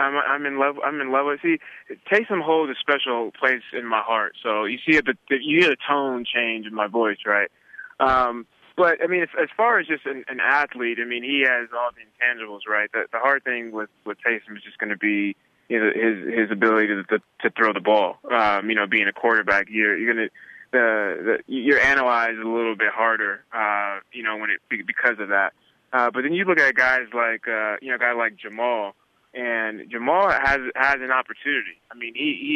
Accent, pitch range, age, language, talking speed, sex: American, 115-170 Hz, 20-39, English, 230 wpm, male